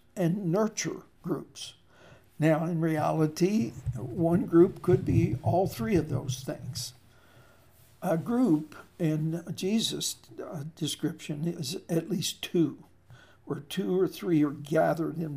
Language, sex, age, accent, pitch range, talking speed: English, male, 60-79, American, 150-175 Hz, 120 wpm